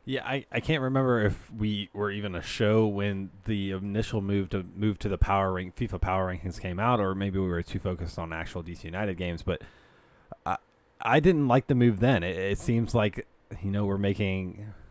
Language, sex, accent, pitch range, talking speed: English, male, American, 95-110 Hz, 215 wpm